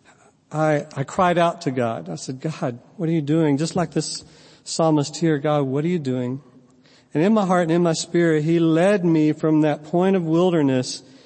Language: English